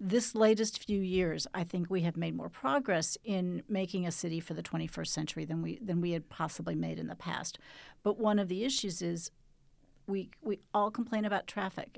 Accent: American